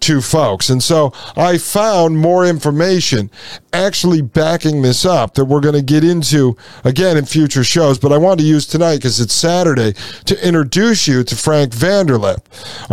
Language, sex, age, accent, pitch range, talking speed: English, male, 50-69, American, 135-175 Hz, 170 wpm